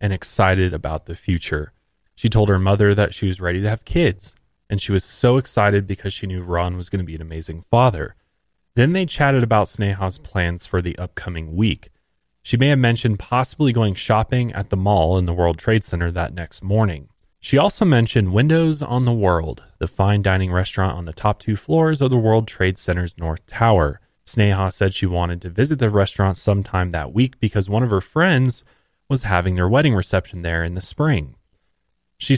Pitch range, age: 90-120 Hz, 20-39